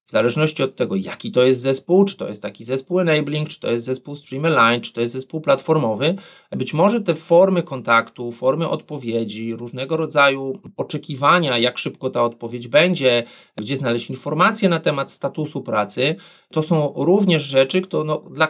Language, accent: Polish, native